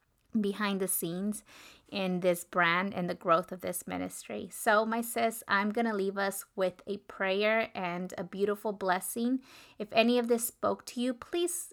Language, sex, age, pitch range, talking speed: English, female, 20-39, 185-215 Hz, 175 wpm